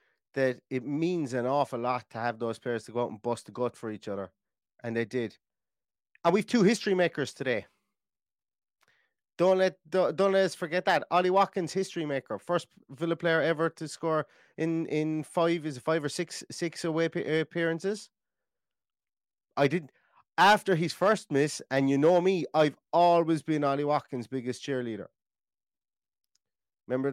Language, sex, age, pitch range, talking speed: English, male, 30-49, 120-165 Hz, 160 wpm